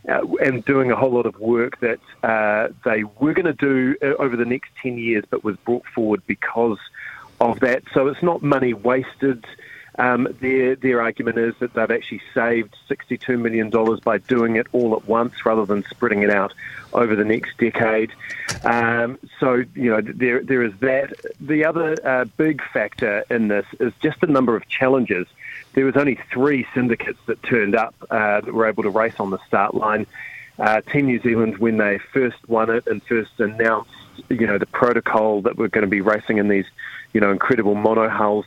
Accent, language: Australian, English